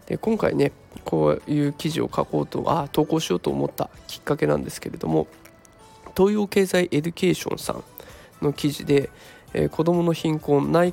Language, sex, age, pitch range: Japanese, male, 20-39, 145-220 Hz